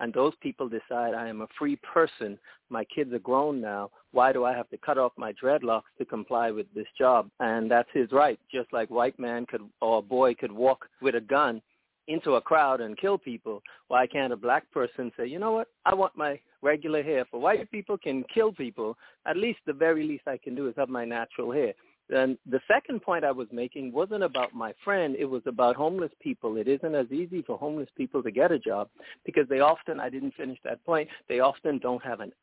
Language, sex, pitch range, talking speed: English, male, 120-155 Hz, 230 wpm